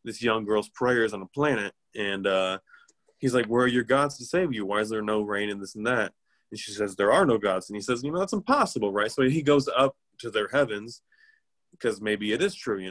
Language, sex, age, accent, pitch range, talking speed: English, male, 20-39, American, 105-130 Hz, 255 wpm